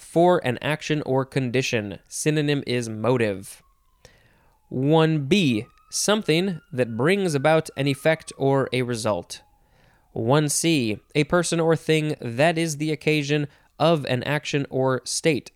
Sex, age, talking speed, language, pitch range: male, 20-39, 125 wpm, English, 115-160 Hz